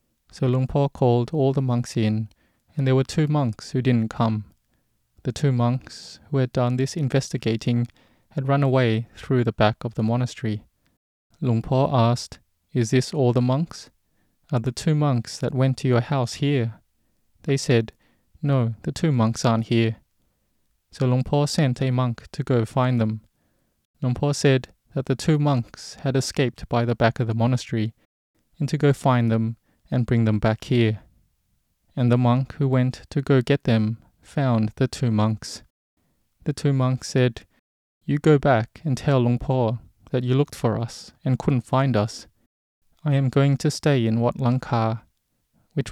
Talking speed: 175 wpm